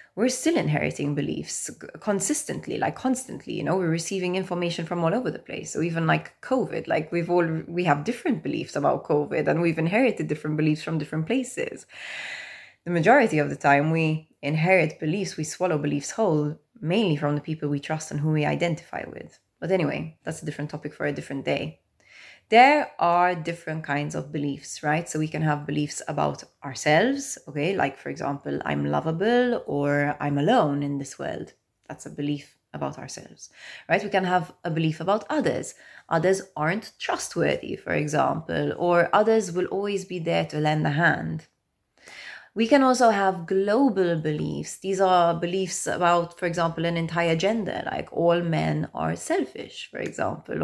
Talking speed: 175 wpm